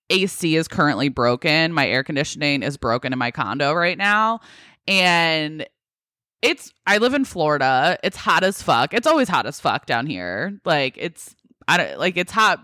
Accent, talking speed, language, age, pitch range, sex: American, 180 wpm, English, 20-39, 140-180 Hz, female